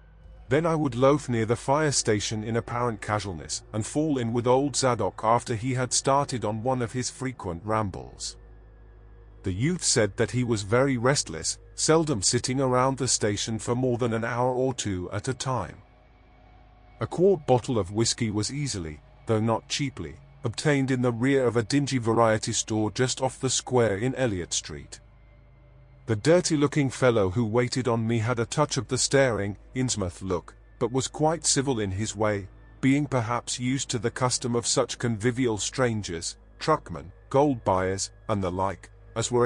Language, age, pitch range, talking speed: English, 40-59, 105-130 Hz, 175 wpm